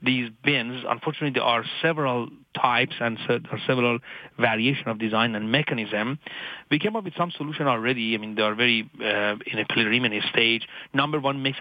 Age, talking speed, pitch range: 40-59, 175 wpm, 115-140 Hz